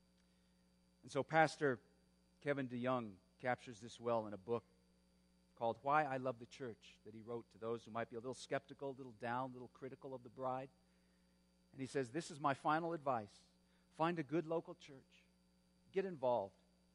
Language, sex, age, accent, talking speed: English, male, 40-59, American, 185 wpm